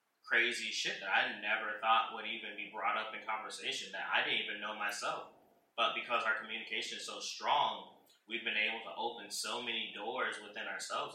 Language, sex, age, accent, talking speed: English, male, 10-29, American, 195 wpm